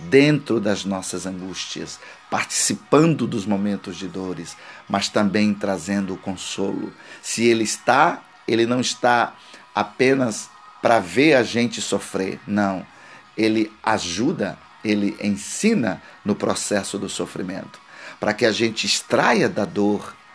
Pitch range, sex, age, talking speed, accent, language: 95-120 Hz, male, 50-69, 125 wpm, Brazilian, Portuguese